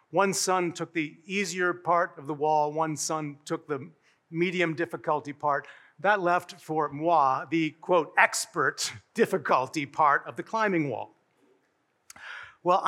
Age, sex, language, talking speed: 50-69, male, English, 140 wpm